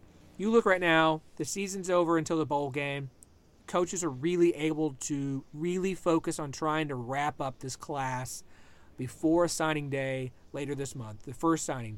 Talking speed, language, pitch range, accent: 170 wpm, English, 120-155 Hz, American